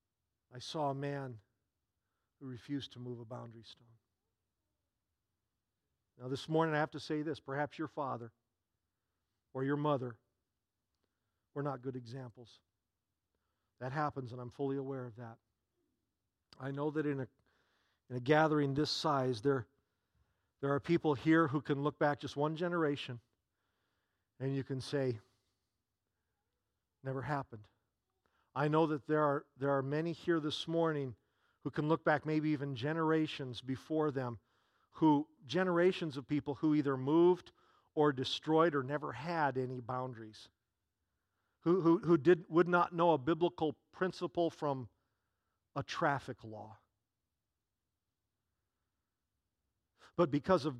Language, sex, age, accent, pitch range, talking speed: English, male, 50-69, American, 105-150 Hz, 135 wpm